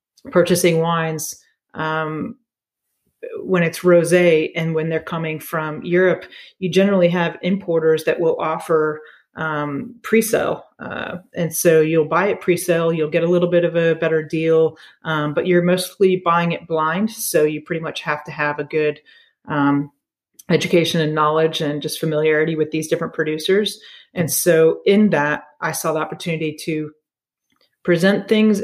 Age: 30-49